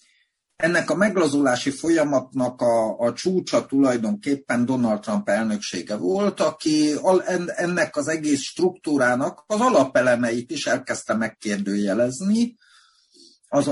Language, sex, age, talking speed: Hungarian, male, 50-69, 100 wpm